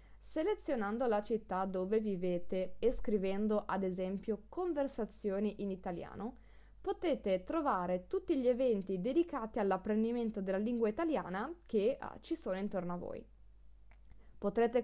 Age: 20-39